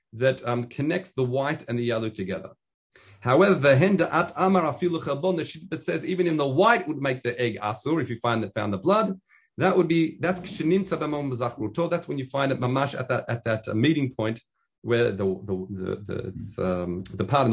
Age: 40-59